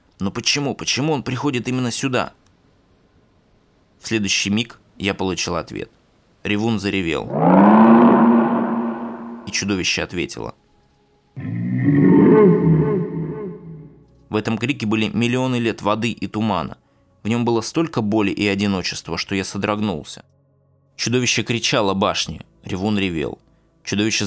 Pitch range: 100-120 Hz